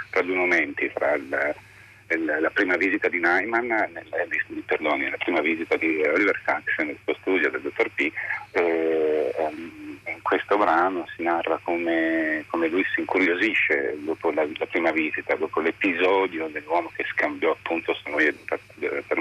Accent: native